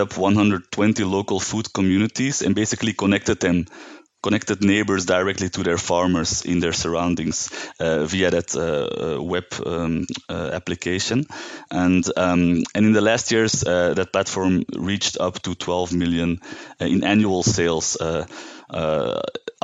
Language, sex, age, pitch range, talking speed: English, male, 30-49, 90-105 Hz, 140 wpm